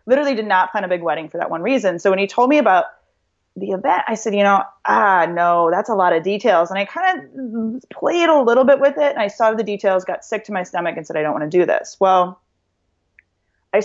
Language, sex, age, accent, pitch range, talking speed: English, female, 30-49, American, 185-250 Hz, 260 wpm